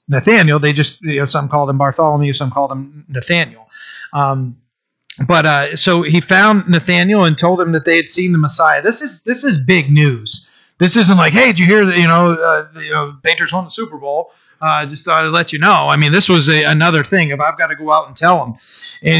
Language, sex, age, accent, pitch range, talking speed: English, male, 30-49, American, 145-180 Hz, 245 wpm